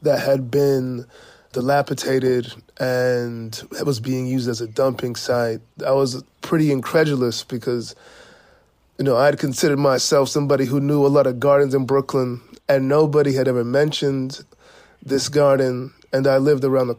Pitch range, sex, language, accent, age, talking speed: 125-140 Hz, male, English, American, 20-39, 160 wpm